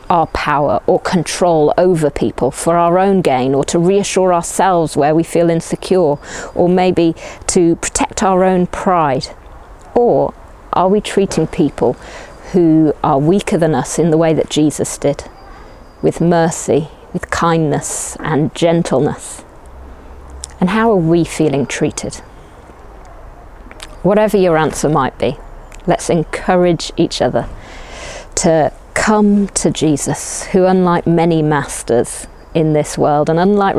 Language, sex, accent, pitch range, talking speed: English, female, British, 150-185 Hz, 130 wpm